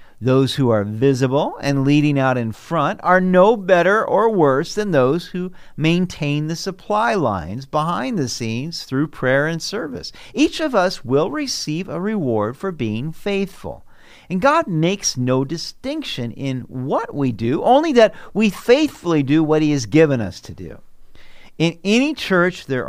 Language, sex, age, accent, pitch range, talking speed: English, male, 50-69, American, 130-190 Hz, 165 wpm